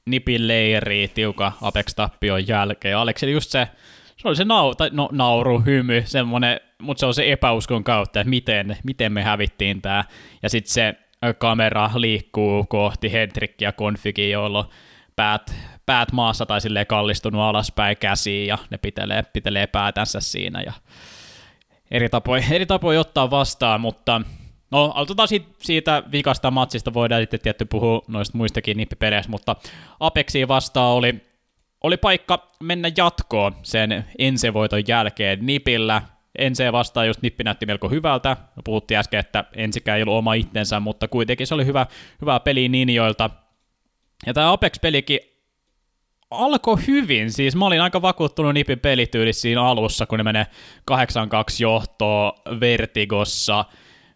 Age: 20-39